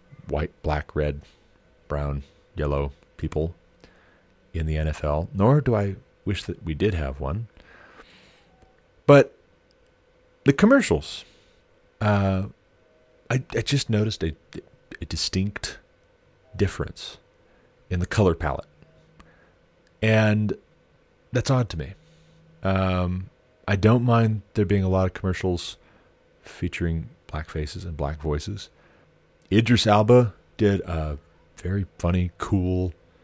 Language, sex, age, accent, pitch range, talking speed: English, male, 40-59, American, 85-110 Hz, 110 wpm